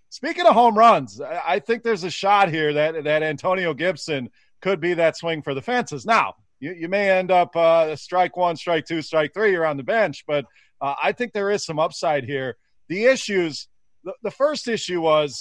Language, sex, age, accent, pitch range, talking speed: English, male, 30-49, American, 145-195 Hz, 205 wpm